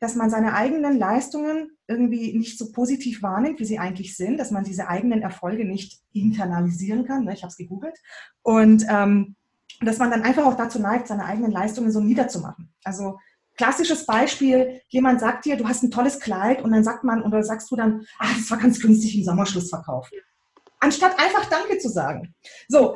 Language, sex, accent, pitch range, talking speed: German, female, German, 220-285 Hz, 190 wpm